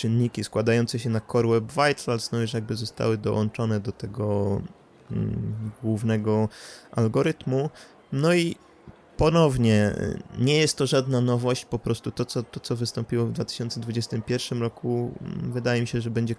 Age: 20-39